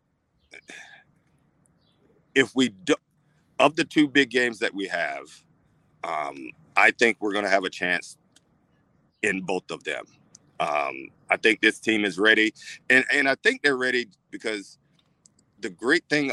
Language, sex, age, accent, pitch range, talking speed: English, male, 50-69, American, 100-135 Hz, 145 wpm